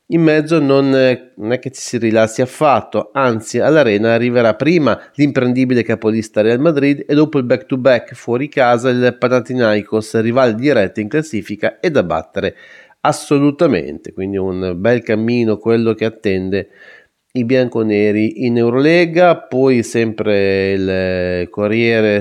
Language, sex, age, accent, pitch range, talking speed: Italian, male, 30-49, native, 110-130 Hz, 135 wpm